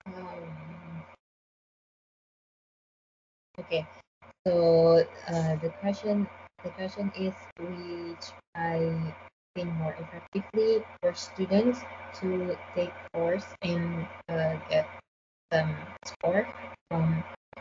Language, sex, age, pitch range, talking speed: Indonesian, female, 20-39, 170-210 Hz, 85 wpm